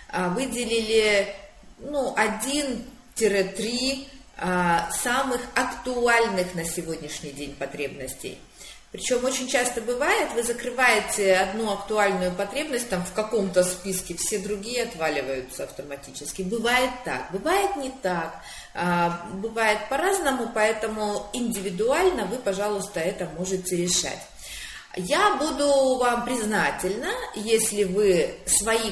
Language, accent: Russian, native